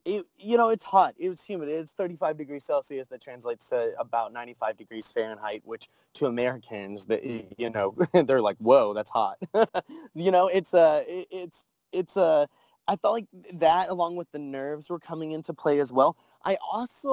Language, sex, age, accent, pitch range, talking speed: English, male, 20-39, American, 125-180 Hz, 180 wpm